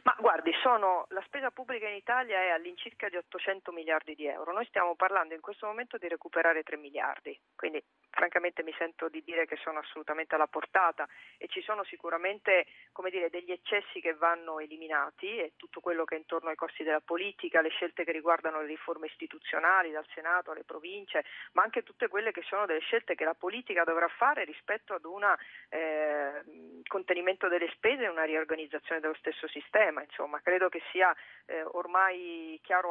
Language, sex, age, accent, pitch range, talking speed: Italian, female, 40-59, native, 160-190 Hz, 175 wpm